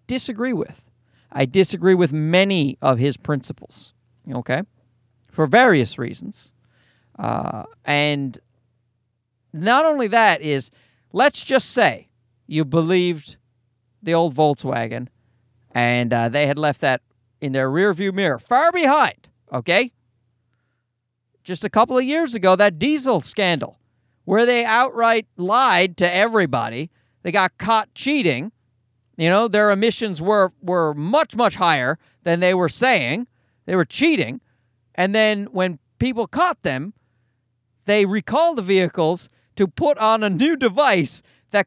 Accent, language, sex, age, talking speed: American, English, male, 40-59, 130 wpm